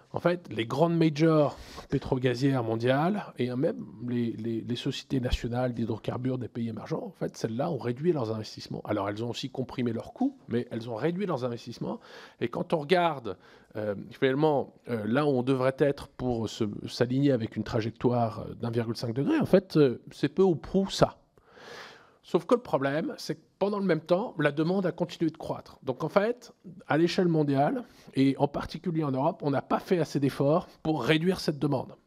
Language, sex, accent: French, male, French